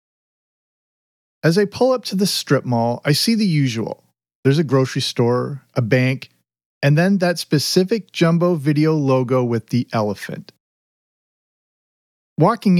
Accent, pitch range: American, 130-170 Hz